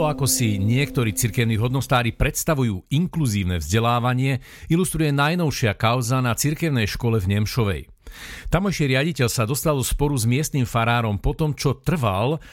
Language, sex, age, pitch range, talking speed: Slovak, male, 50-69, 115-140 Hz, 135 wpm